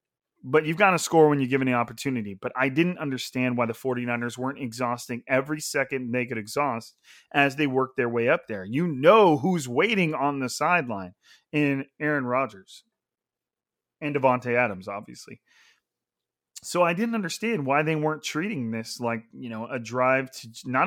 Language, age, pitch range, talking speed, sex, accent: English, 30-49, 125-160 Hz, 175 wpm, male, American